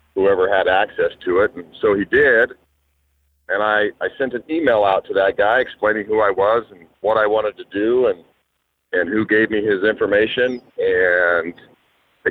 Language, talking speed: English, 185 wpm